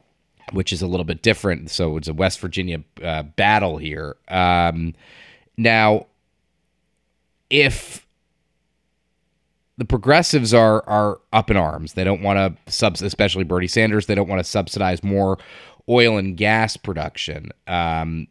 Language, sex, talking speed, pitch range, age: English, male, 140 wpm, 85-105 Hz, 30-49